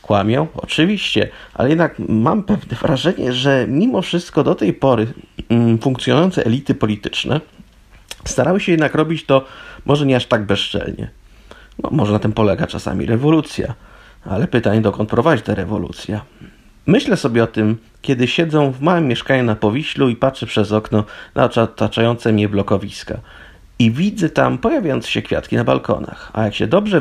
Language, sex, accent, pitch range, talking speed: Polish, male, native, 105-140 Hz, 150 wpm